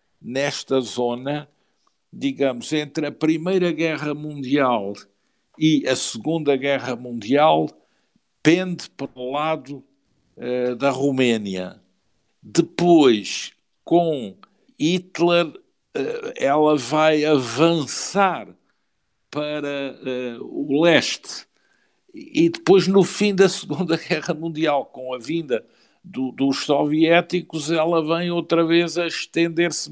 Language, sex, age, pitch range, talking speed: Portuguese, male, 60-79, 130-165 Hz, 100 wpm